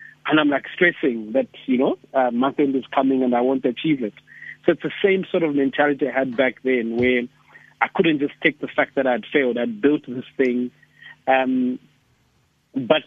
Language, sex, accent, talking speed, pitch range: English, male, South African, 200 wpm, 125-150 Hz